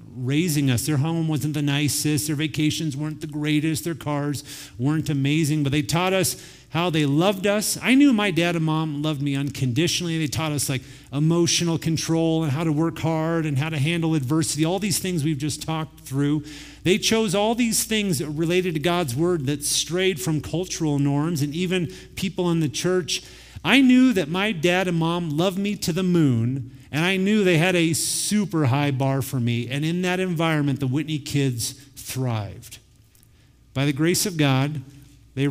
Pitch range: 145-170 Hz